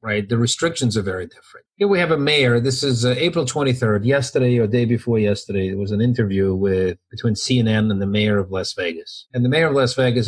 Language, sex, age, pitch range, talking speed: English, male, 40-59, 110-140 Hz, 235 wpm